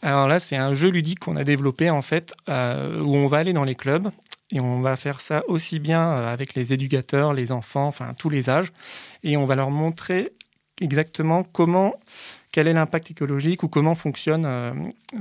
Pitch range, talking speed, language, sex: 130-165 Hz, 195 wpm, French, male